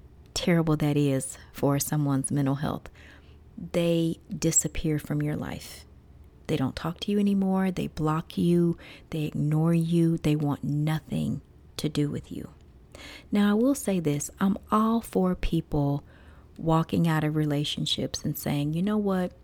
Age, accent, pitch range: 40-59, American, 145-185 Hz